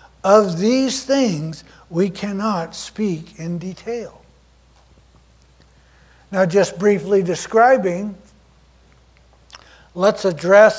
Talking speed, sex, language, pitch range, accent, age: 80 wpm, male, English, 140-210 Hz, American, 60-79